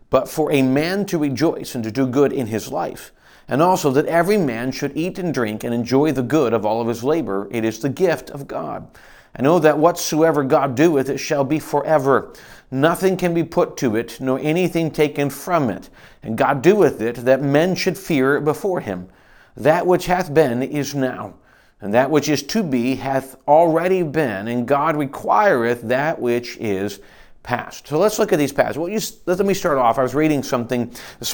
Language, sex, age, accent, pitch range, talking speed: English, male, 40-59, American, 120-150 Hz, 205 wpm